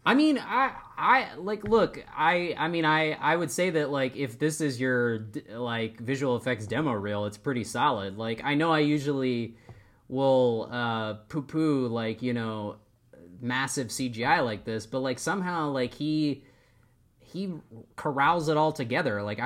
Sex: male